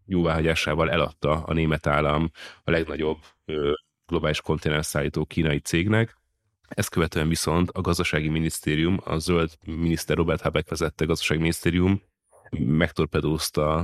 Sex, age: male, 30-49